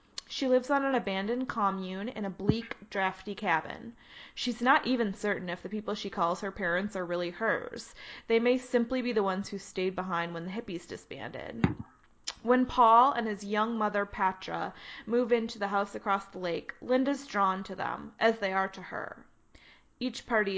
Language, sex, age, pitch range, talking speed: English, female, 20-39, 185-230 Hz, 185 wpm